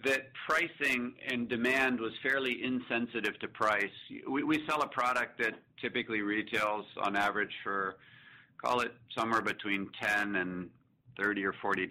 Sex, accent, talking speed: male, American, 135 wpm